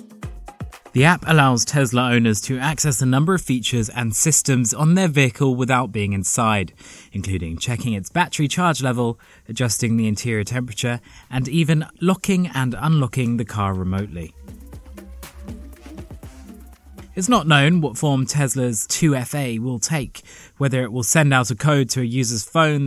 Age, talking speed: 20-39, 150 wpm